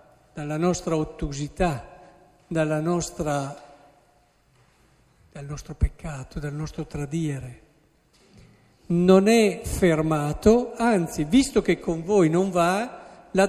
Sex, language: male, Italian